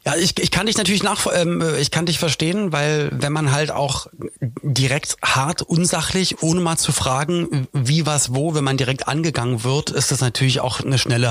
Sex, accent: male, German